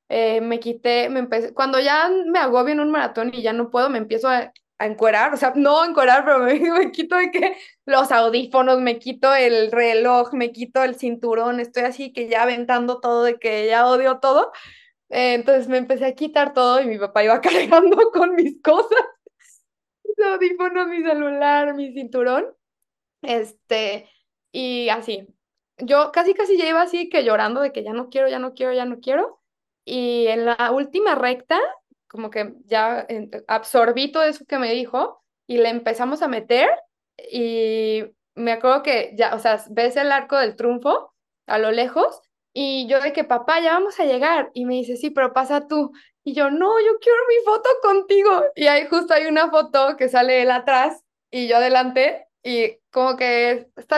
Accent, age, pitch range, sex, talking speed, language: Mexican, 20-39, 235-305 Hz, female, 190 wpm, Spanish